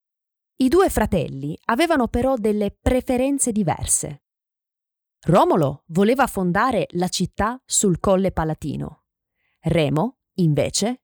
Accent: native